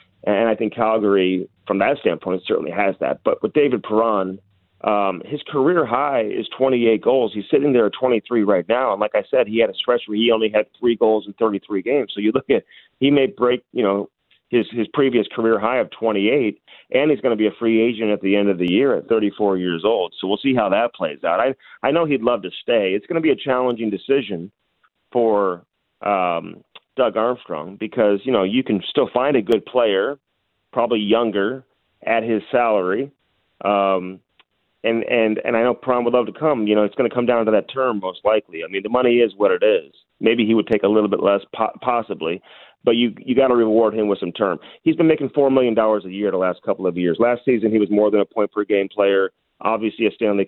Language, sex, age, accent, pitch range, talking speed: English, male, 40-59, American, 100-120 Hz, 235 wpm